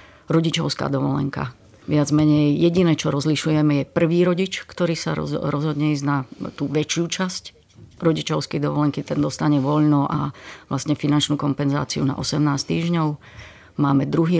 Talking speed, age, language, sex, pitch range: 140 wpm, 30-49, Czech, female, 140-155 Hz